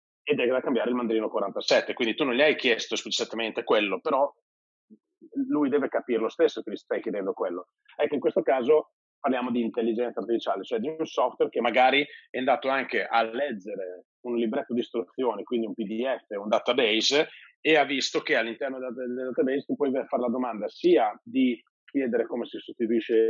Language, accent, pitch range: Italian, native, 115-140 Hz